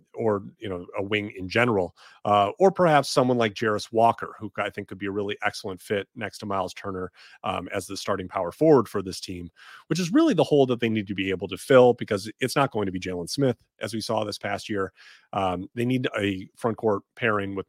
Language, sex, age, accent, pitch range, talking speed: English, male, 30-49, American, 95-120 Hz, 240 wpm